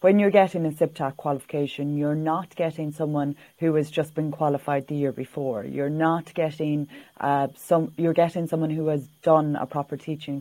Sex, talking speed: female, 185 wpm